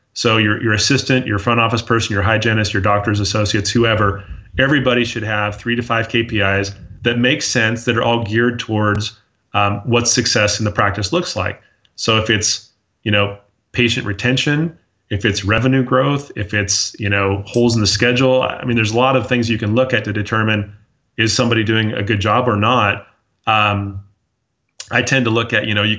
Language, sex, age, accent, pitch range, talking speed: English, male, 30-49, American, 105-120 Hz, 200 wpm